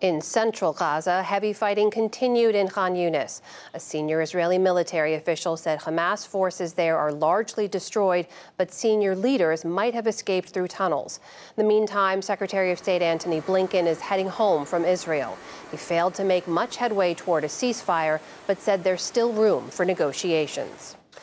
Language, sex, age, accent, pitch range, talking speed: English, female, 40-59, American, 165-200 Hz, 165 wpm